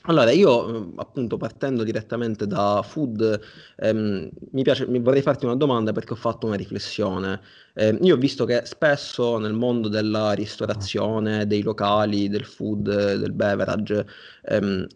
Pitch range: 105-125 Hz